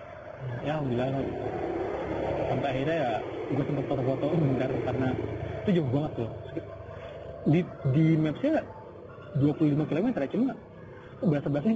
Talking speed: 135 wpm